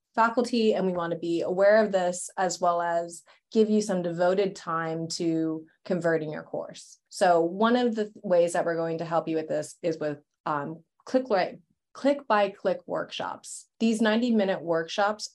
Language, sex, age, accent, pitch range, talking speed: English, female, 30-49, American, 165-205 Hz, 165 wpm